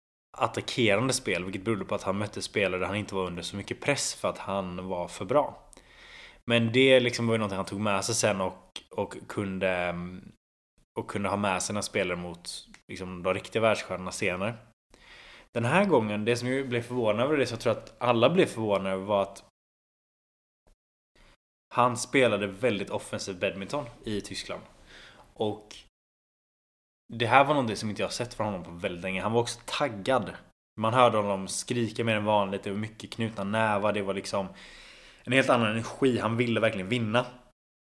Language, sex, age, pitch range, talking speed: Swedish, male, 20-39, 95-120 Hz, 185 wpm